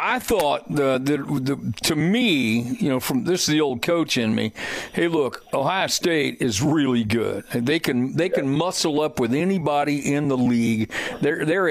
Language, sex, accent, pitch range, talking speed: English, male, American, 145-180 Hz, 190 wpm